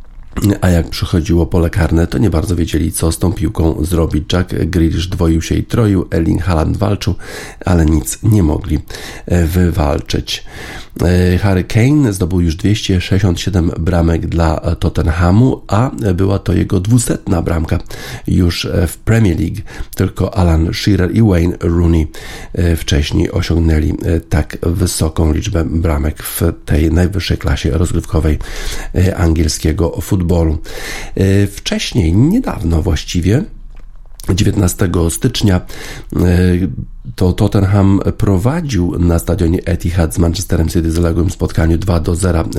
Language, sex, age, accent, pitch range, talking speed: Polish, male, 50-69, native, 85-100 Hz, 120 wpm